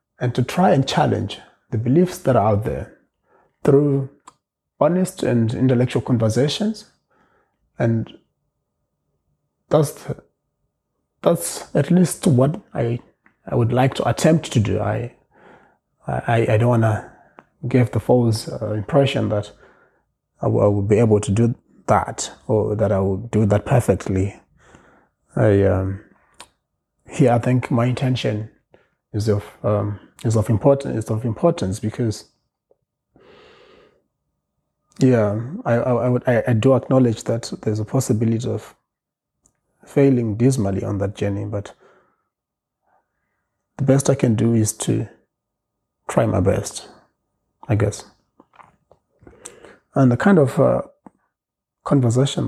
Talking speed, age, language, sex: 130 wpm, 30-49, English, male